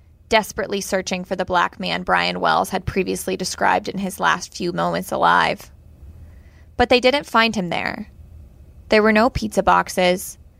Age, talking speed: 20-39, 160 wpm